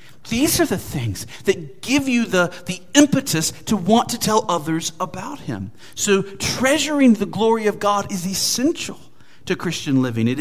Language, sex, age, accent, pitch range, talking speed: English, male, 40-59, American, 125-185 Hz, 165 wpm